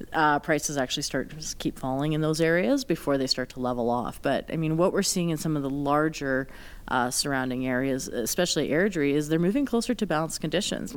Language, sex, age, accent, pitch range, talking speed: English, female, 30-49, American, 140-175 Hz, 215 wpm